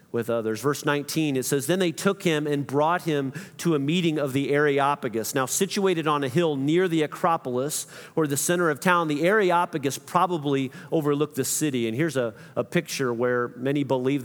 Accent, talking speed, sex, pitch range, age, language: American, 195 wpm, male, 140-175 Hz, 40-59, English